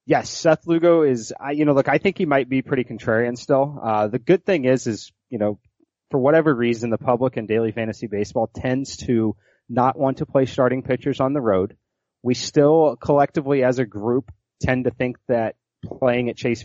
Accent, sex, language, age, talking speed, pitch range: American, male, English, 30-49, 200 wpm, 115-135 Hz